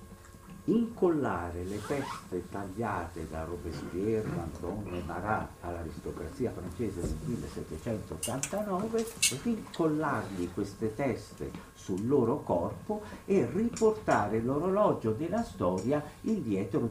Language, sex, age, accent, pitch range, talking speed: Italian, male, 50-69, native, 90-140 Hz, 90 wpm